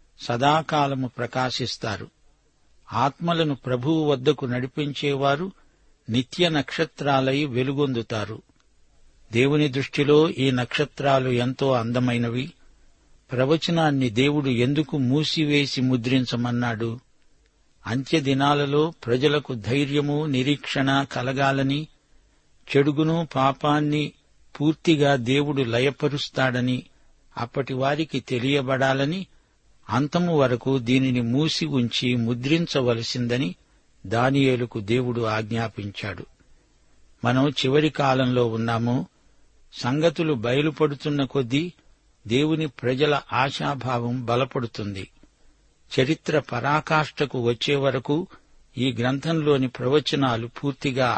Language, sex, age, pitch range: Telugu, male, 60-79, 125-150 Hz